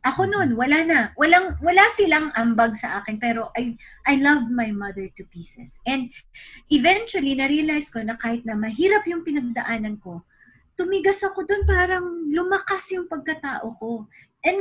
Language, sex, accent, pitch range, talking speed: Filipino, female, native, 225-345 Hz, 165 wpm